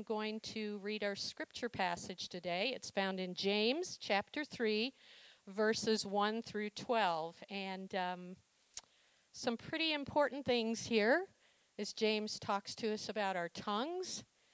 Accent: American